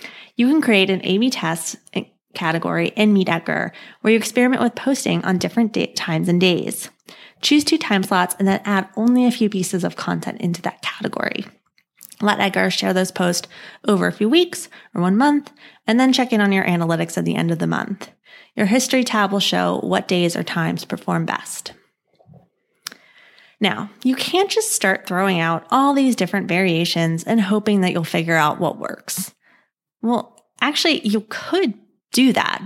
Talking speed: 180 wpm